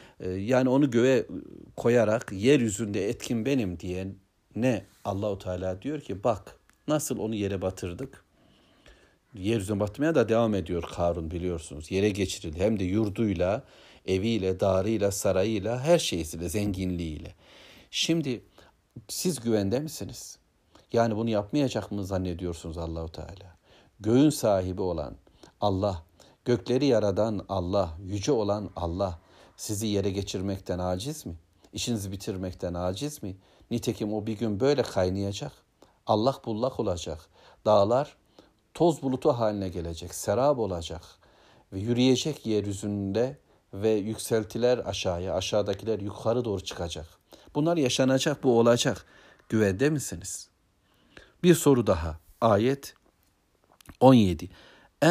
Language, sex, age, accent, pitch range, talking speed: Turkish, male, 60-79, native, 95-120 Hz, 110 wpm